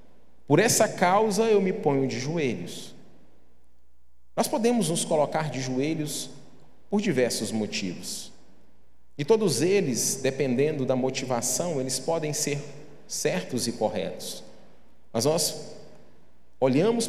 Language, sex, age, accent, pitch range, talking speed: Portuguese, male, 40-59, Brazilian, 130-195 Hz, 110 wpm